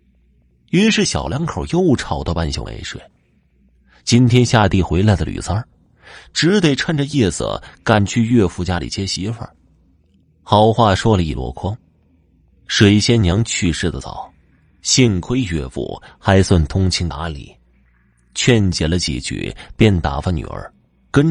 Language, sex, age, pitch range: Chinese, male, 30-49, 80-120 Hz